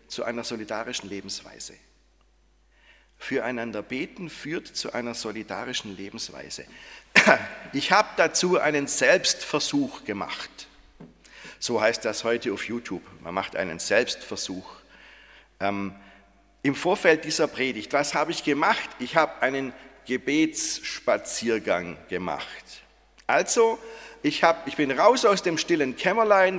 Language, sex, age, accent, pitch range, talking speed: German, male, 40-59, German, 125-180 Hz, 115 wpm